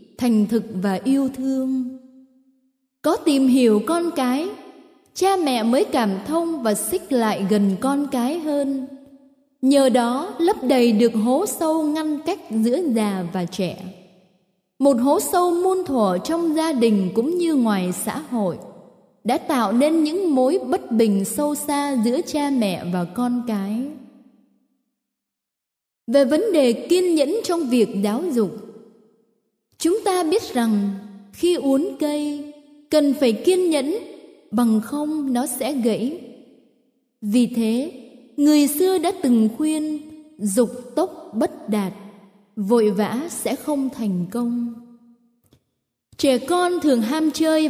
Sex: female